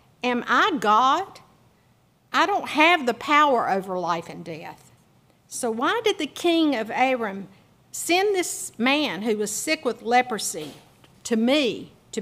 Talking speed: 145 wpm